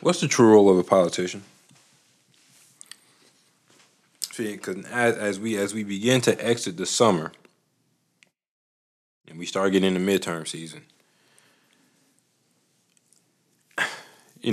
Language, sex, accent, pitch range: English, male, American, 85-115 Hz